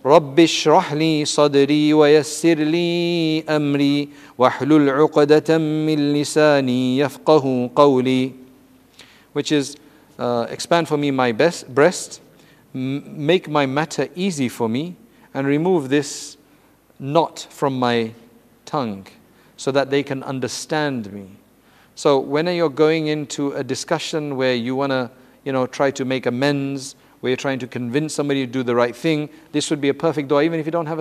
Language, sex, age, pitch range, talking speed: English, male, 50-69, 125-150 Hz, 130 wpm